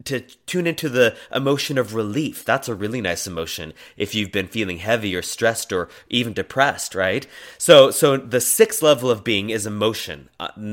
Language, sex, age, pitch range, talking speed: English, male, 30-49, 110-135 Hz, 185 wpm